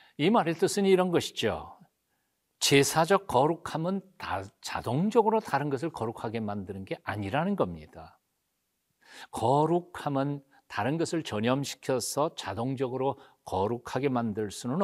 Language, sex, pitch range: Korean, male, 105-150 Hz